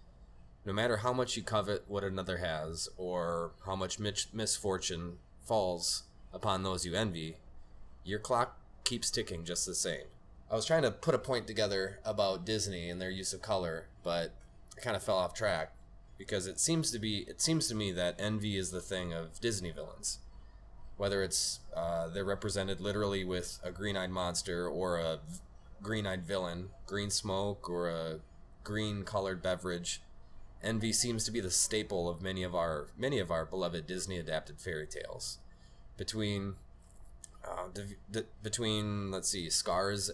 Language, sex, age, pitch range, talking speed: English, male, 20-39, 85-105 Hz, 165 wpm